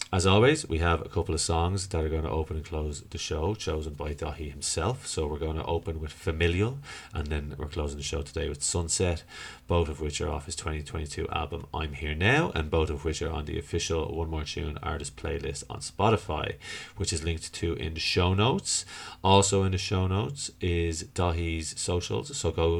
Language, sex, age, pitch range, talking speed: English, male, 30-49, 80-95 Hz, 215 wpm